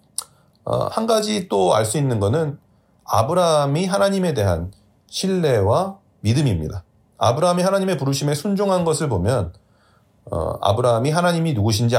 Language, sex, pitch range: Korean, male, 105-165 Hz